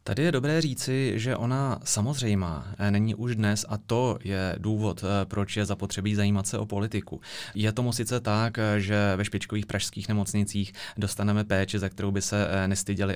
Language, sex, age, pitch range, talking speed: Czech, male, 30-49, 95-105 Hz, 175 wpm